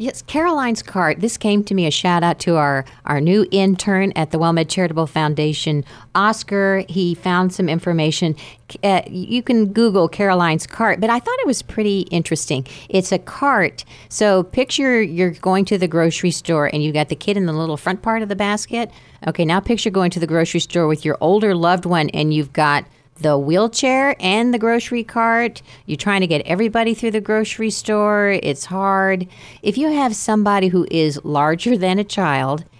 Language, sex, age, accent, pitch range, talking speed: English, female, 40-59, American, 150-205 Hz, 190 wpm